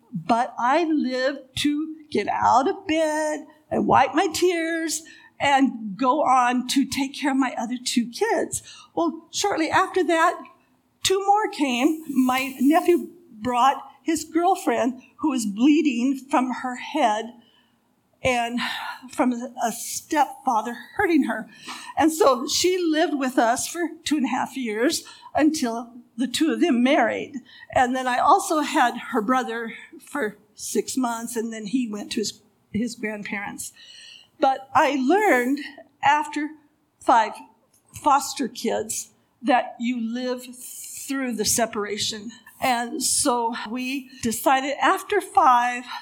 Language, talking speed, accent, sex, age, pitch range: English, 135 wpm, American, female, 50-69, 235-315 Hz